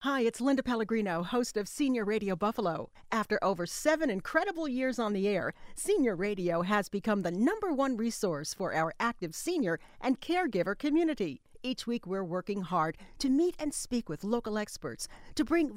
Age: 50-69